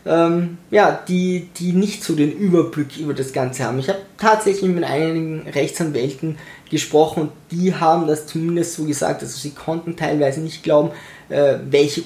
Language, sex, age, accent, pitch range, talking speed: German, male, 20-39, German, 150-185 Hz, 155 wpm